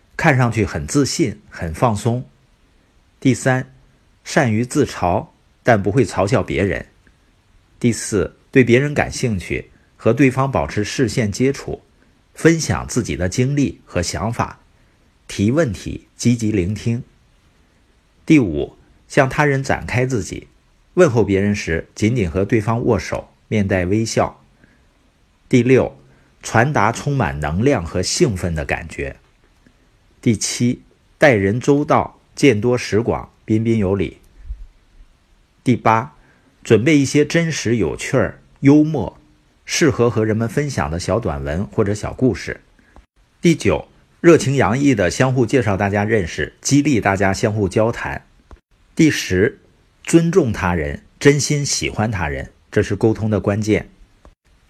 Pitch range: 95-130 Hz